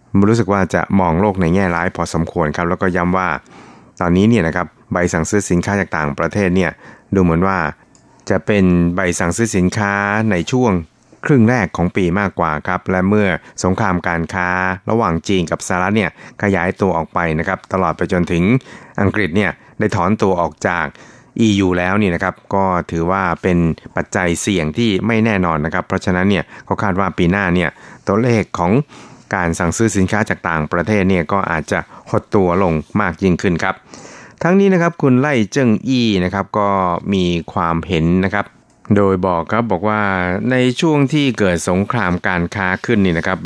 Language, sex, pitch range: Thai, male, 85-105 Hz